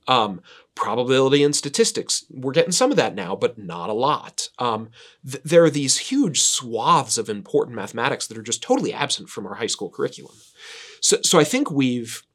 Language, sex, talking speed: English, male, 185 wpm